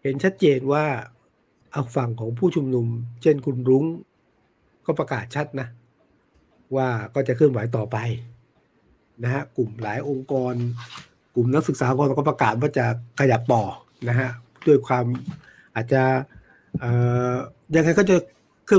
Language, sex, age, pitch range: Thai, male, 60-79, 120-155 Hz